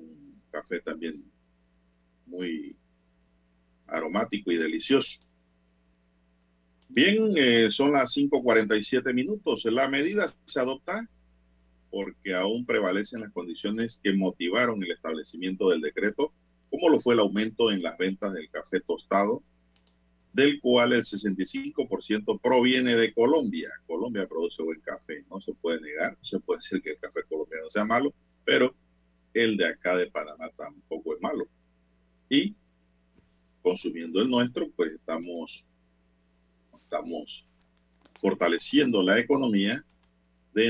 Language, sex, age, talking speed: Spanish, male, 50-69, 120 wpm